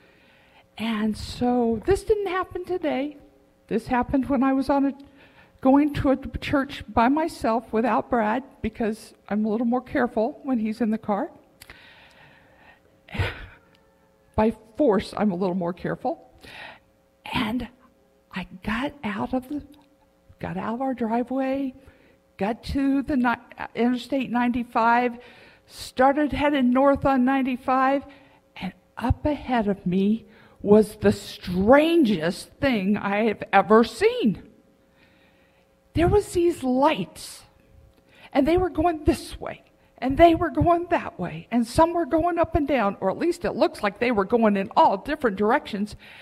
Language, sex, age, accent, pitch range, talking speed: English, female, 50-69, American, 220-295 Hz, 140 wpm